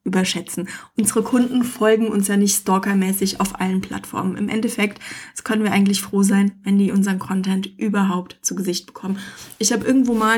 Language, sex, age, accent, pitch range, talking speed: German, female, 20-39, German, 200-230 Hz, 180 wpm